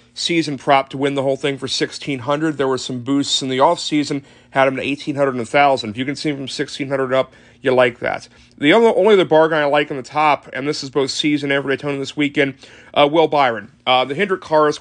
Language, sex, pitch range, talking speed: English, male, 135-155 Hz, 255 wpm